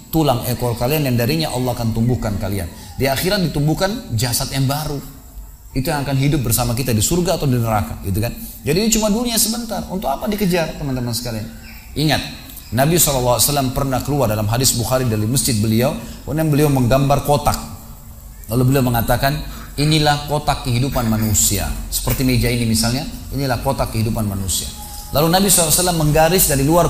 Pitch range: 110-155 Hz